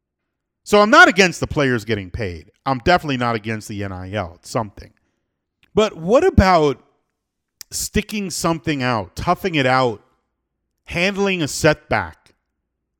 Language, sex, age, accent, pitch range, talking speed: English, male, 40-59, American, 90-150 Hz, 130 wpm